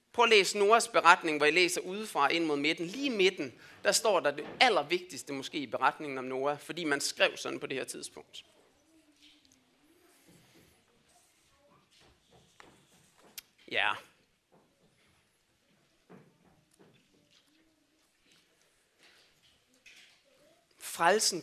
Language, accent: Danish, native